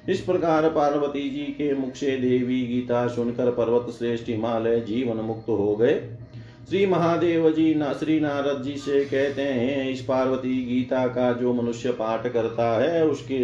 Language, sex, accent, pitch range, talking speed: Hindi, male, native, 125-145 Hz, 165 wpm